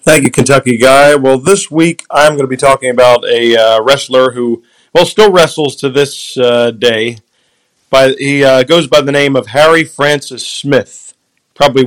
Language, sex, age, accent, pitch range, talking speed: English, male, 40-59, American, 120-145 Hz, 180 wpm